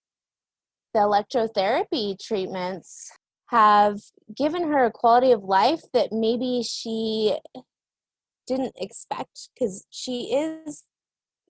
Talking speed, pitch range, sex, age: 95 wpm, 205-250 Hz, female, 20-39